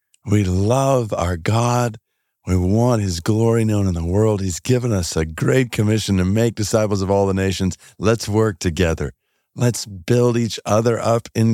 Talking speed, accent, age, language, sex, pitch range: 175 wpm, American, 50-69, English, male, 90-115 Hz